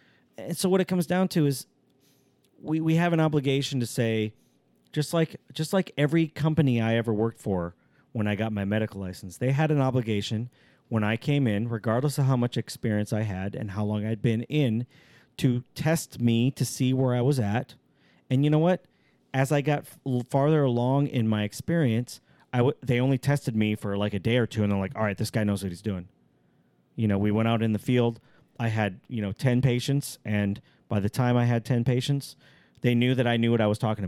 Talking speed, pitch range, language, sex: 225 wpm, 110-140 Hz, English, male